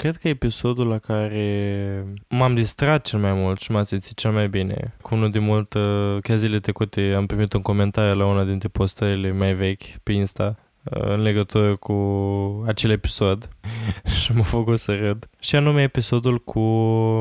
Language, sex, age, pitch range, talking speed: Romanian, male, 20-39, 105-120 Hz, 170 wpm